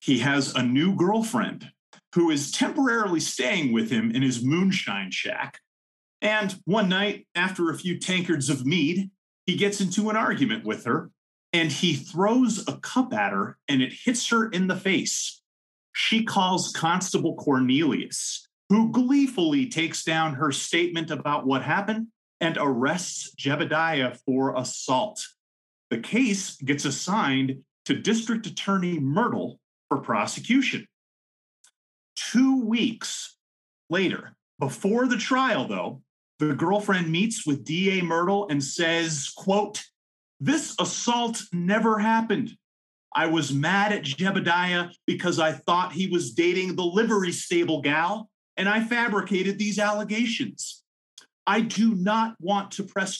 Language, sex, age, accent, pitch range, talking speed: English, male, 30-49, American, 155-220 Hz, 135 wpm